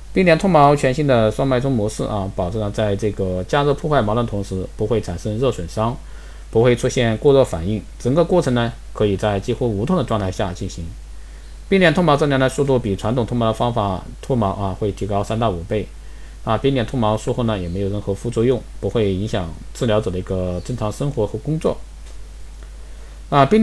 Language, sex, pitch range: Chinese, male, 100-130 Hz